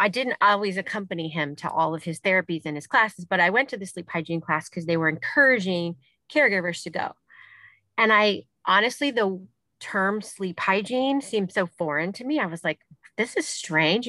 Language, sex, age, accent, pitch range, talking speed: English, female, 30-49, American, 170-215 Hz, 195 wpm